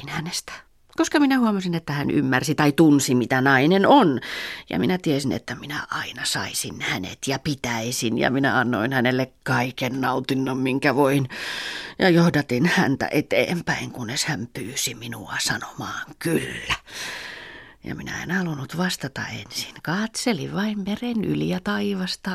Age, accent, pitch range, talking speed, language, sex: 30-49, native, 135-195 Hz, 135 wpm, Finnish, female